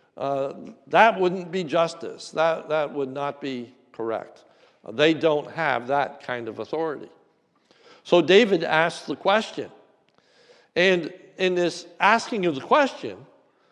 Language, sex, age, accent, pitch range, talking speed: English, male, 60-79, American, 145-190 Hz, 135 wpm